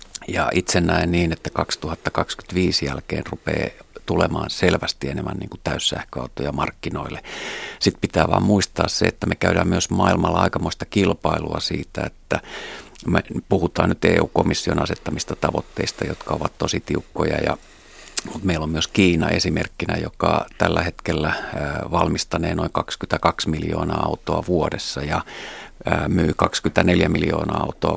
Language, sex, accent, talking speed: Finnish, male, native, 125 wpm